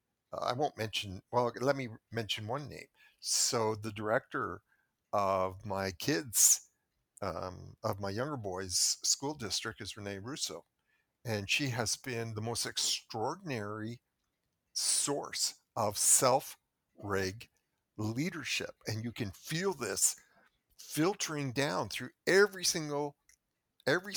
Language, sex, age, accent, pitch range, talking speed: English, male, 50-69, American, 105-145 Hz, 115 wpm